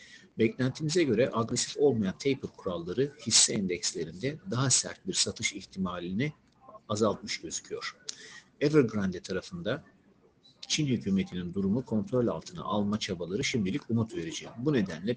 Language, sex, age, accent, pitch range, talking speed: Turkish, male, 50-69, native, 105-135 Hz, 115 wpm